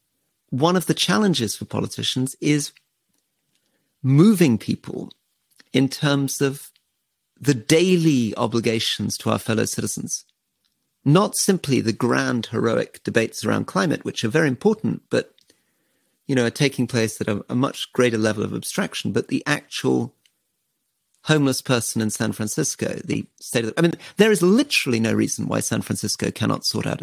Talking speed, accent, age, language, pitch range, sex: 155 wpm, British, 40-59, English, 115-160 Hz, male